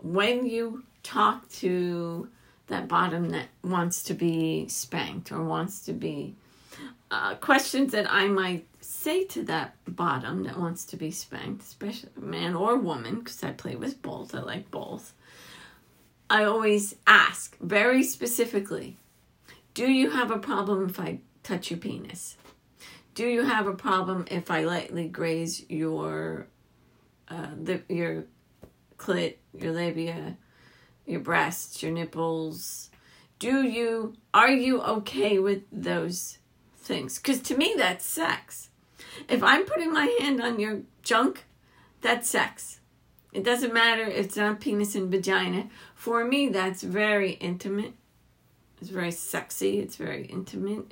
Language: English